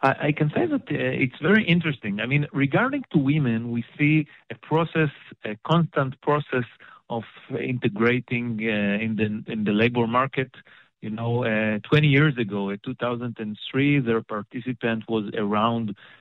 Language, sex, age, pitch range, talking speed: English, male, 40-59, 110-145 Hz, 150 wpm